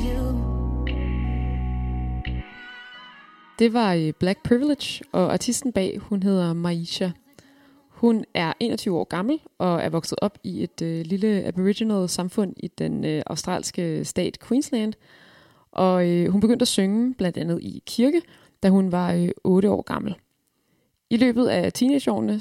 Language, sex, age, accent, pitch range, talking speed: Danish, female, 20-39, native, 170-220 Hz, 140 wpm